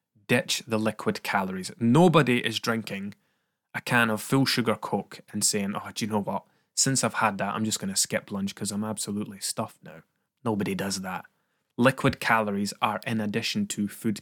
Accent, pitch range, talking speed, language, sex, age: British, 110-130 Hz, 190 wpm, English, male, 20-39